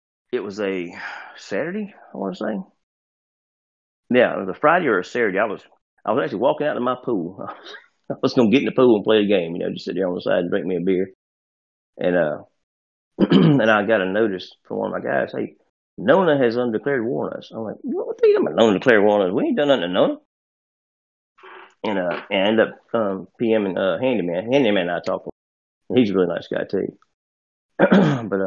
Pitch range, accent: 85-110 Hz, American